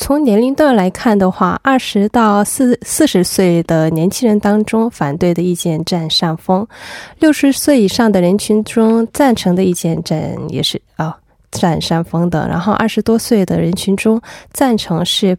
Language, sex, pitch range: Korean, female, 170-220 Hz